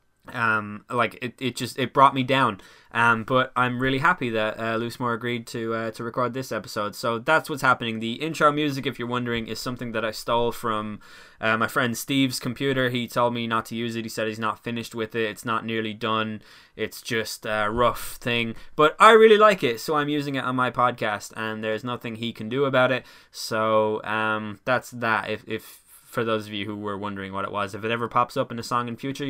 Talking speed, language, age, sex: 235 wpm, English, 10-29, male